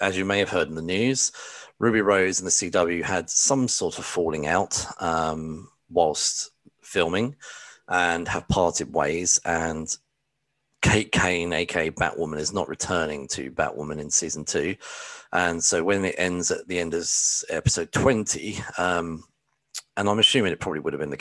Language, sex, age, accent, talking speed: English, male, 30-49, British, 170 wpm